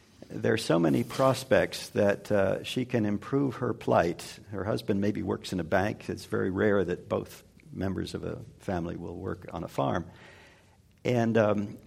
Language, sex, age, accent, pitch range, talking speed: English, male, 60-79, American, 100-120 Hz, 175 wpm